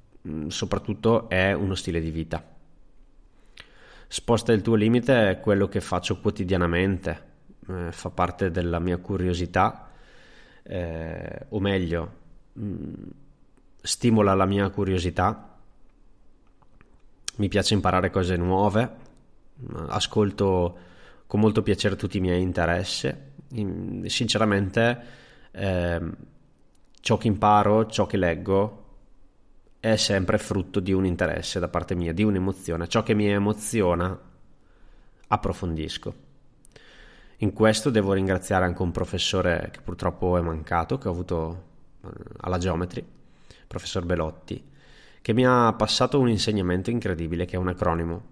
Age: 20-39